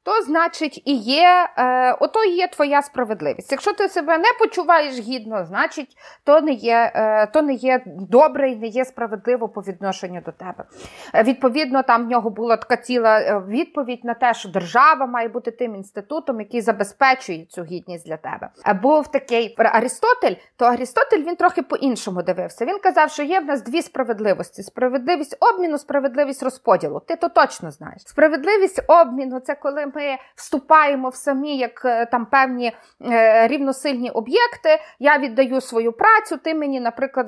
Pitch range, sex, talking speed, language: 235-310 Hz, female, 160 wpm, Ukrainian